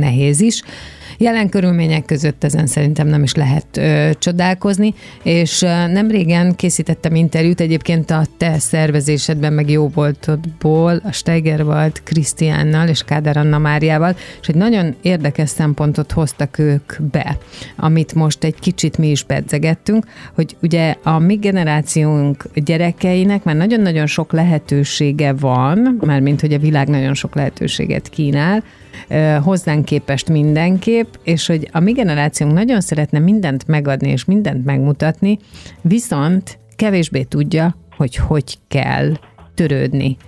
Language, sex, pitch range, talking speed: Hungarian, female, 145-170 Hz, 130 wpm